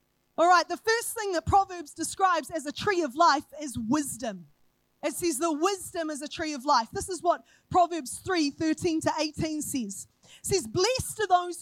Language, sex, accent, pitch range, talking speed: English, female, Australian, 275-365 Hz, 195 wpm